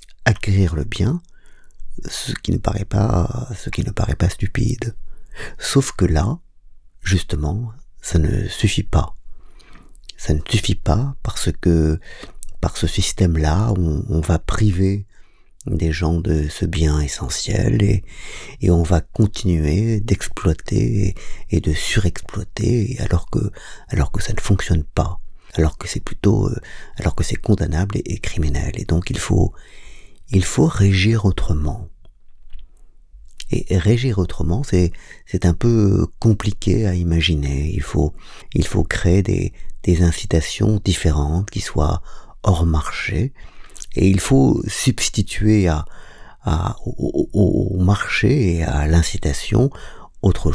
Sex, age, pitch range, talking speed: male, 50-69, 85-105 Hz, 135 wpm